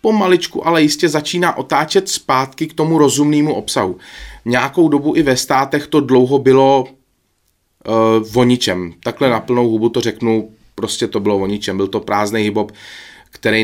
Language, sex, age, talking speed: Czech, male, 30-49, 155 wpm